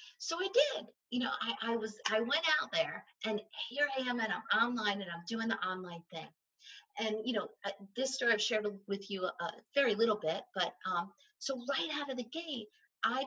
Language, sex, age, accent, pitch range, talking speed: English, female, 50-69, American, 200-260 Hz, 215 wpm